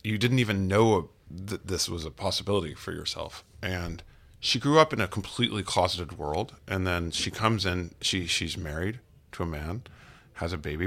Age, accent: 30-49, American